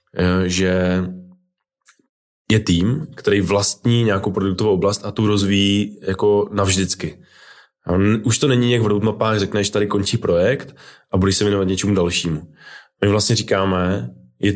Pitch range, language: 90-105 Hz, Czech